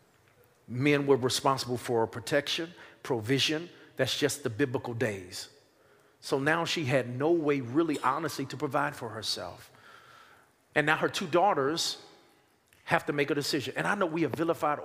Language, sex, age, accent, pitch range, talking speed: English, male, 50-69, American, 135-170 Hz, 160 wpm